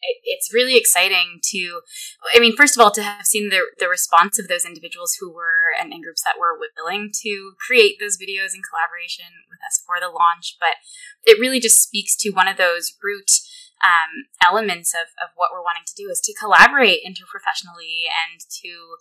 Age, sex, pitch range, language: 20-39, female, 180-295 Hz, English